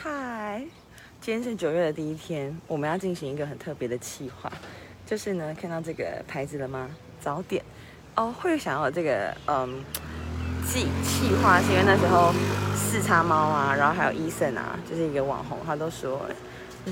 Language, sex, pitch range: Chinese, female, 135-180 Hz